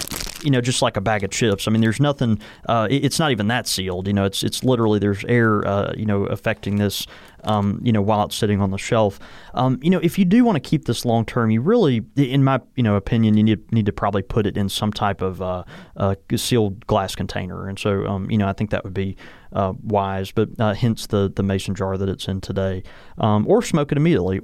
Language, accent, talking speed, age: English, American, 250 wpm, 30-49